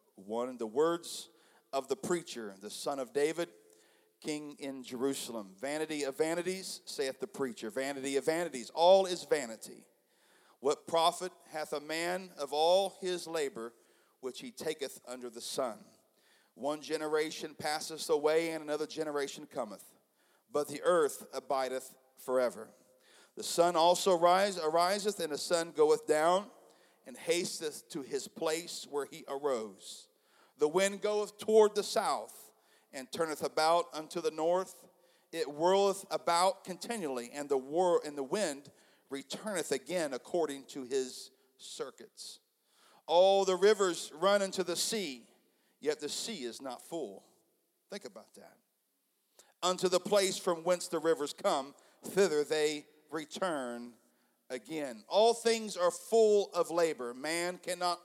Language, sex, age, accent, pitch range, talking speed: English, male, 40-59, American, 145-195 Hz, 140 wpm